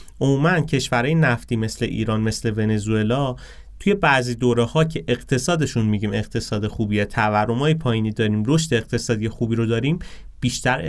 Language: Persian